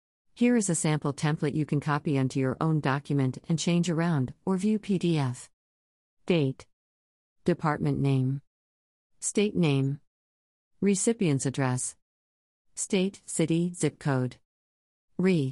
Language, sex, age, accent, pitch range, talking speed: English, female, 40-59, American, 125-170 Hz, 115 wpm